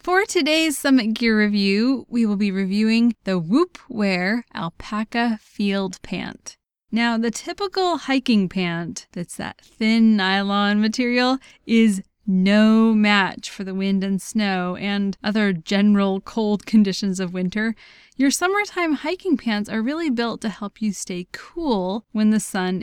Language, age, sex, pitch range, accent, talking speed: English, 20-39, female, 195-265 Hz, American, 145 wpm